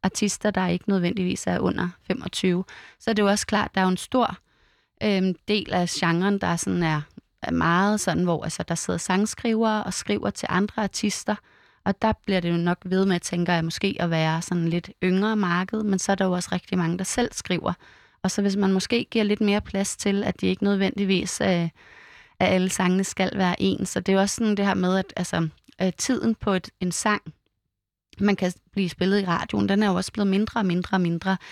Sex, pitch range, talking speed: female, 175-205 Hz, 230 wpm